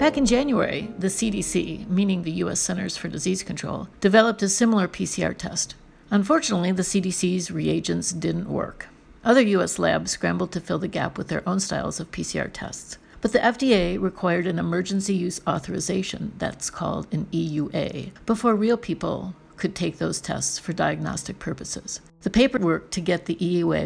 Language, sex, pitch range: English, female, 175-220 Hz